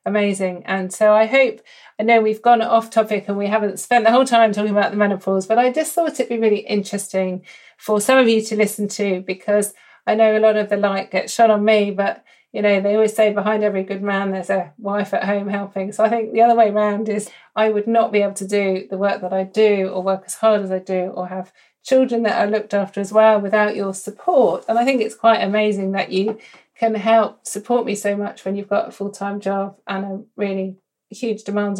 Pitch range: 195-230 Hz